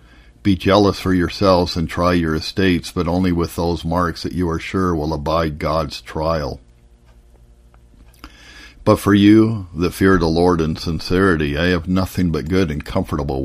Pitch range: 70-90 Hz